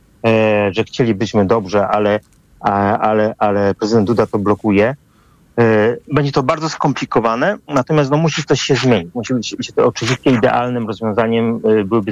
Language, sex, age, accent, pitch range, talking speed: Polish, male, 40-59, native, 105-130 Hz, 135 wpm